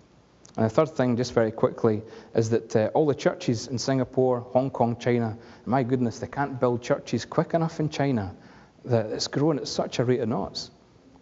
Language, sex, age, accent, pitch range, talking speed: English, male, 30-49, British, 110-130 Hz, 200 wpm